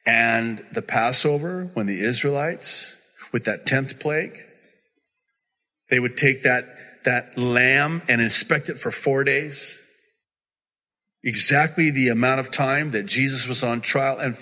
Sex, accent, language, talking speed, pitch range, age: male, American, English, 135 wpm, 140-195 Hz, 50-69